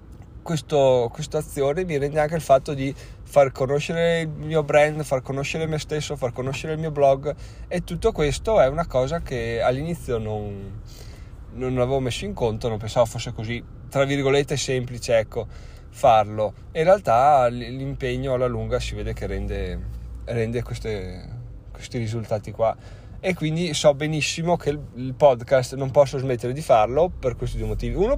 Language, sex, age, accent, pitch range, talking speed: Italian, male, 20-39, native, 110-135 Hz, 160 wpm